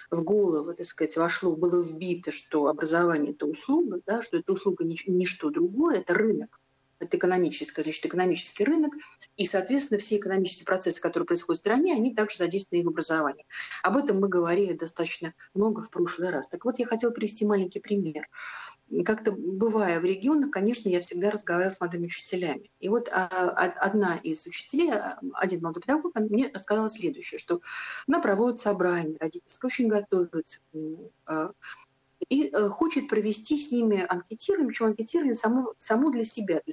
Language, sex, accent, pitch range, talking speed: Russian, female, native, 175-235 Hz, 155 wpm